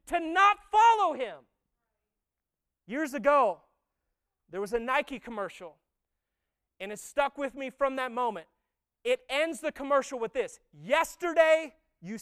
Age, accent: 30-49, American